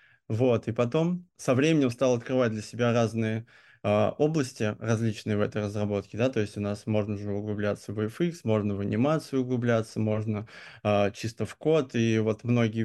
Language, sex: Russian, male